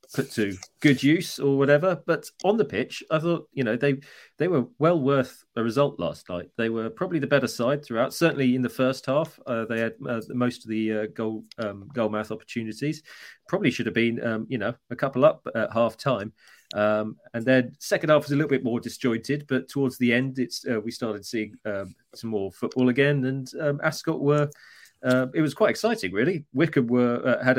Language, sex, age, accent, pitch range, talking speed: English, male, 30-49, British, 110-140 Hz, 220 wpm